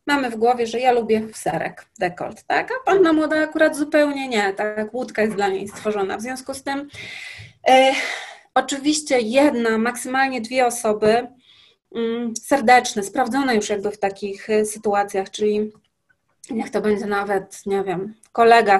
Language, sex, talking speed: Polish, female, 155 wpm